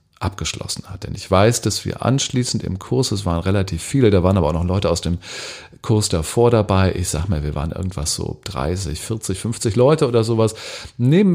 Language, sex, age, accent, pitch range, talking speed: German, male, 40-59, German, 95-120 Hz, 205 wpm